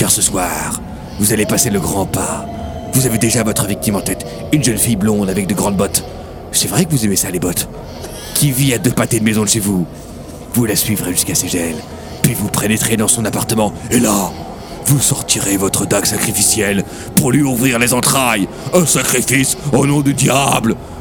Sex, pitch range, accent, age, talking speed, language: male, 100-145 Hz, French, 40-59, 205 wpm, French